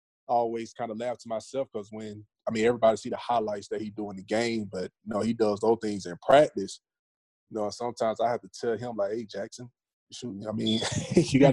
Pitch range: 105-120 Hz